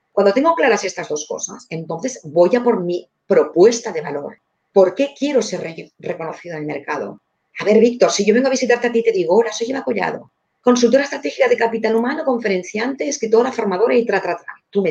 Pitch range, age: 175-240 Hz, 40-59